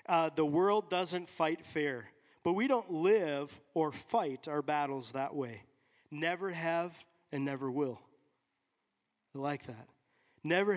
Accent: American